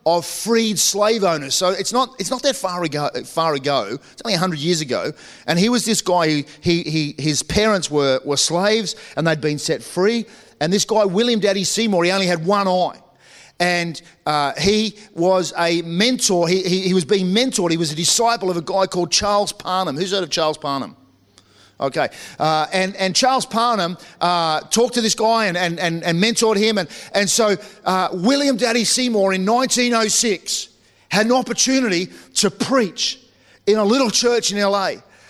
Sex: male